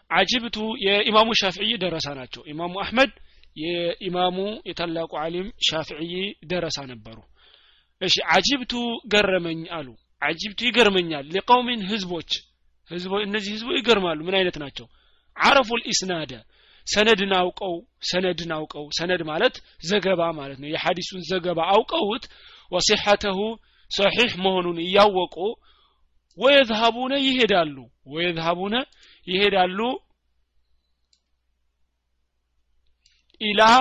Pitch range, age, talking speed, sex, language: 150-200 Hz, 30-49, 90 wpm, male, Amharic